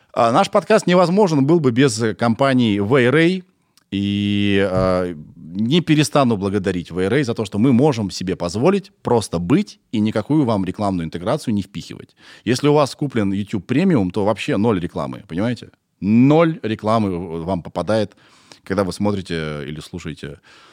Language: Russian